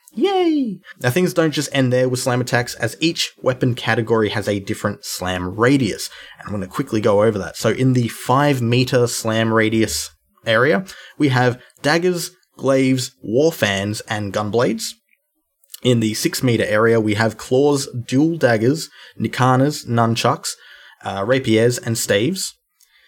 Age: 20-39